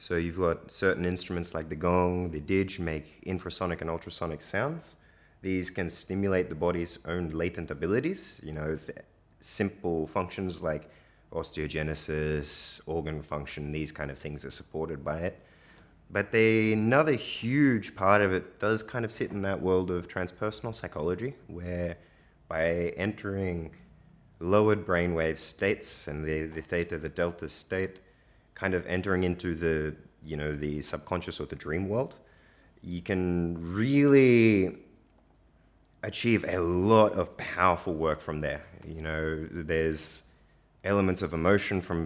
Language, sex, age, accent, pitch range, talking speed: English, male, 20-39, Australian, 80-95 Hz, 145 wpm